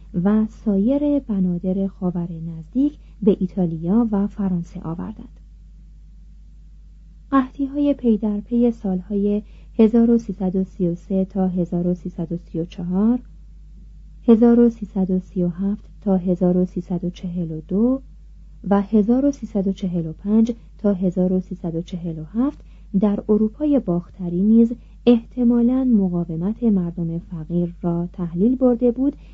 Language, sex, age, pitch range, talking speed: Persian, female, 40-59, 180-230 Hz, 75 wpm